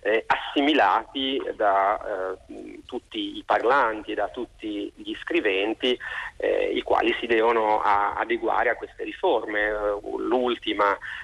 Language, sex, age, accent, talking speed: Italian, male, 40-59, native, 105 wpm